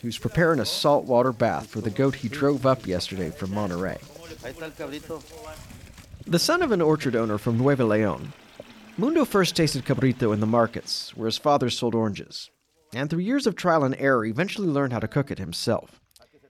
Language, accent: English, American